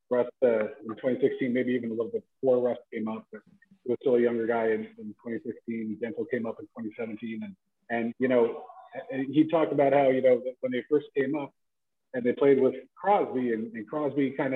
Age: 40-59